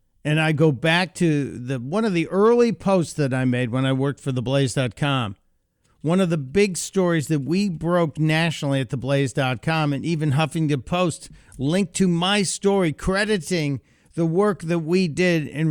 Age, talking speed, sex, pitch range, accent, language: 50-69, 170 wpm, male, 135-175 Hz, American, English